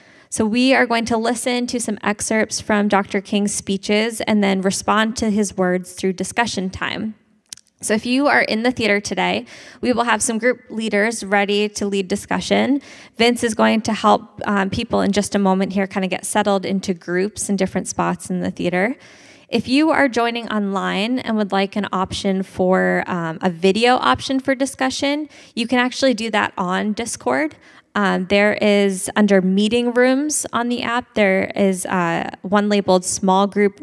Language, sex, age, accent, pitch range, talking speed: English, female, 20-39, American, 185-230 Hz, 185 wpm